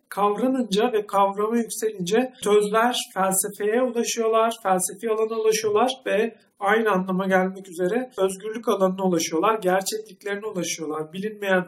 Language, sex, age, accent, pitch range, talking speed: Turkish, male, 50-69, native, 185-220 Hz, 110 wpm